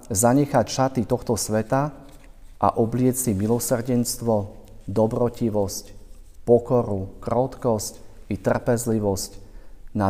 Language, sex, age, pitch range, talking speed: Slovak, male, 40-59, 95-120 Hz, 85 wpm